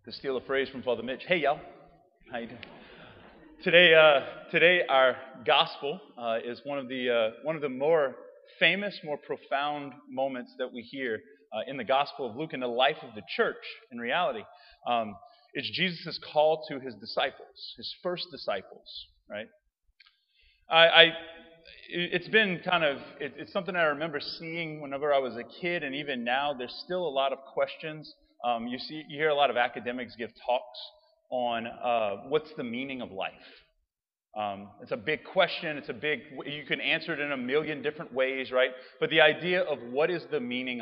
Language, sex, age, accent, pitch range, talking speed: English, male, 30-49, American, 130-175 Hz, 190 wpm